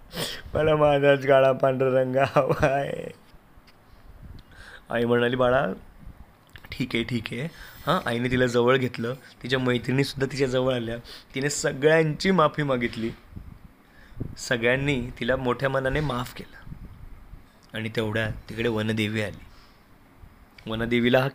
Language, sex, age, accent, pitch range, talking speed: Marathi, male, 20-39, native, 120-145 Hz, 75 wpm